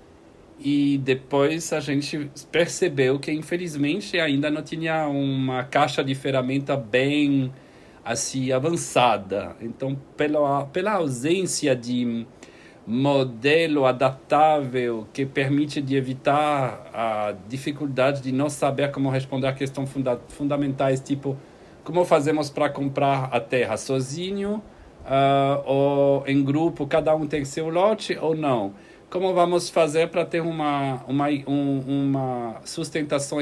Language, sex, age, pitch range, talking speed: Portuguese, male, 40-59, 135-165 Hz, 120 wpm